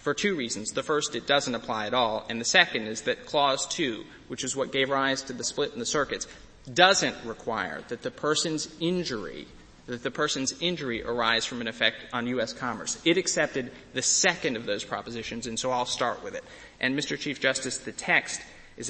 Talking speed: 205 wpm